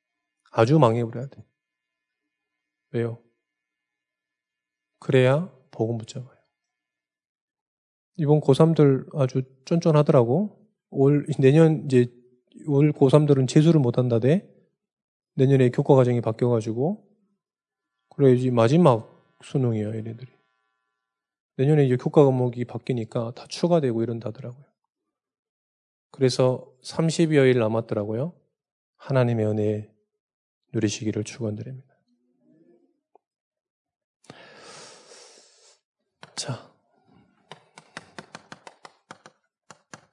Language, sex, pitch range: Korean, male, 115-145 Hz